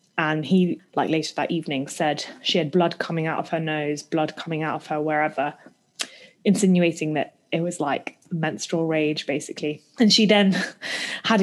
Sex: female